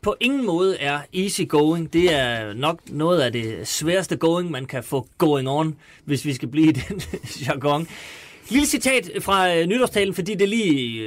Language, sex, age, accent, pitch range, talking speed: Danish, male, 30-49, native, 150-205 Hz, 180 wpm